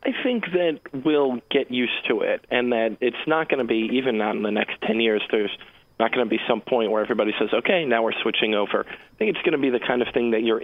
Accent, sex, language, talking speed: American, male, English, 275 wpm